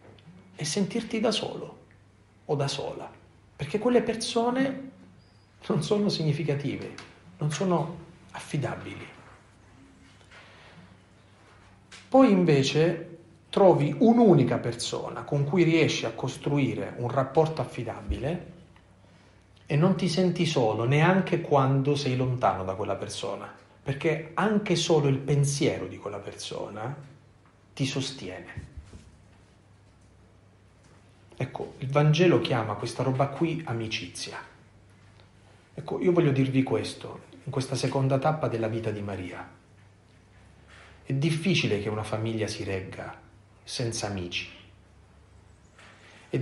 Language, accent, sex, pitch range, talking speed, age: Italian, native, male, 100-145 Hz, 105 wpm, 40-59